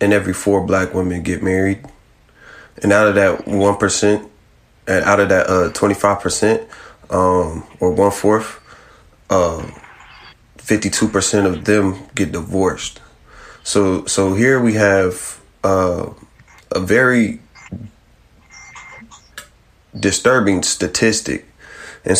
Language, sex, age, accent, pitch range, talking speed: English, male, 30-49, American, 95-105 Hz, 110 wpm